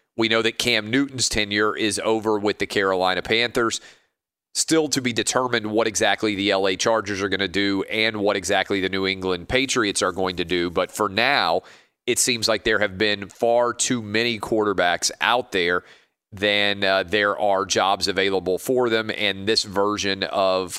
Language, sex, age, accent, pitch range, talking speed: English, male, 40-59, American, 95-115 Hz, 180 wpm